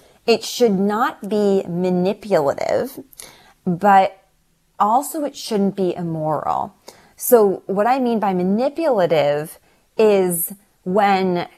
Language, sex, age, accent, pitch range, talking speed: English, female, 20-39, American, 155-195 Hz, 100 wpm